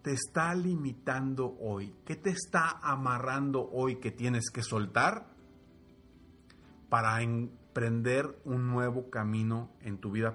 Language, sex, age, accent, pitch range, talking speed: Spanish, male, 40-59, Mexican, 120-175 Hz, 120 wpm